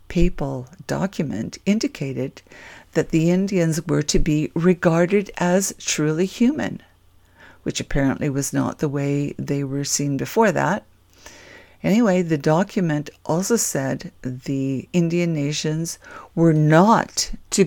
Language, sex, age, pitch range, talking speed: English, female, 60-79, 135-175 Hz, 120 wpm